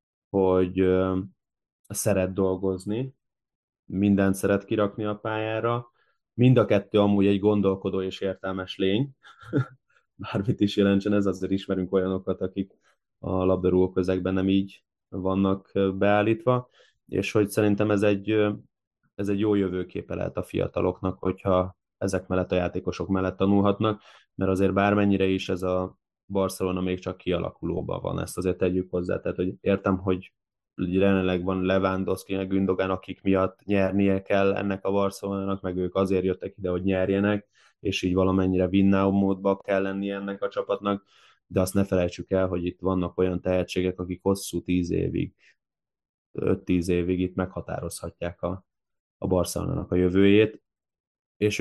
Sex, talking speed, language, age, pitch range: male, 140 wpm, Hungarian, 20-39, 90-100 Hz